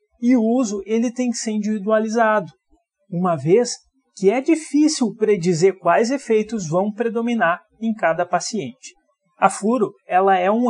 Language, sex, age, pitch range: Portuguese, male, 30-49, 180-230 Hz